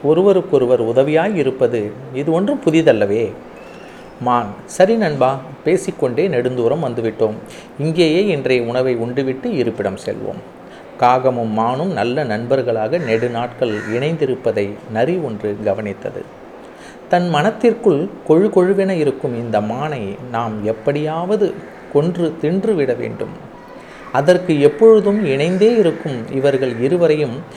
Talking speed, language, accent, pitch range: 100 wpm, Tamil, native, 125-185 Hz